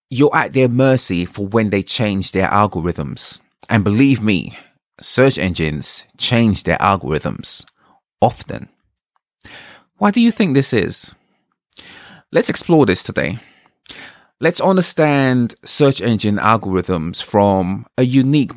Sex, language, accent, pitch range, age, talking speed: male, English, British, 95-135 Hz, 30-49, 120 wpm